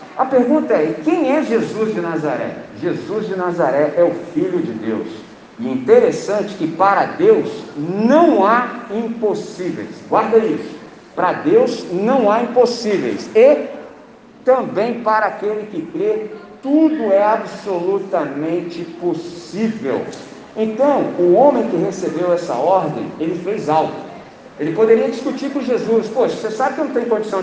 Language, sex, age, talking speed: Portuguese, male, 50-69, 140 wpm